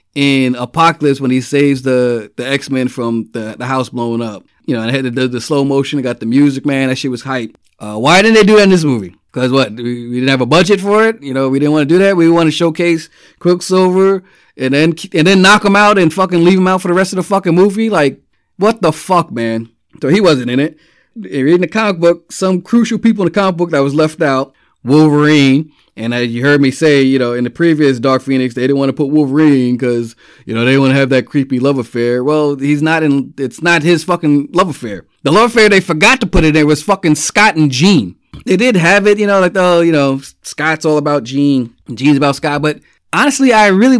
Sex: male